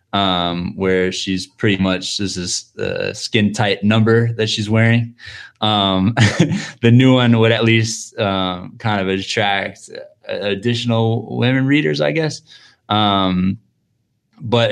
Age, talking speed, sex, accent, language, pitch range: 20-39, 140 wpm, male, American, English, 100-120 Hz